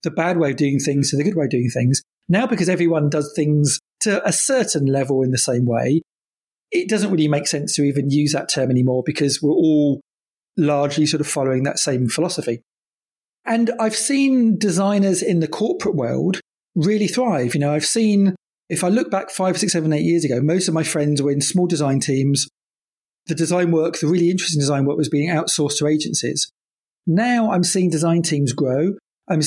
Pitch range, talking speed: 145-185 Hz, 205 wpm